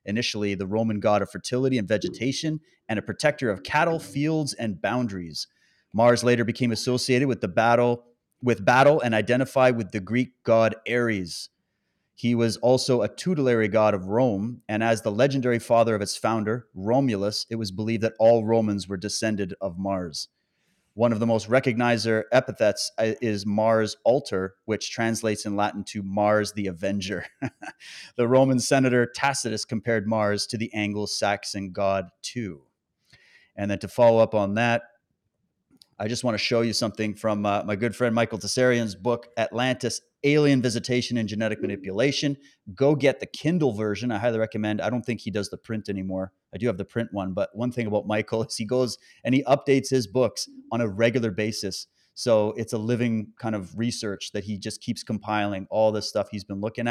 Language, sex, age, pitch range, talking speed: English, male, 30-49, 105-125 Hz, 180 wpm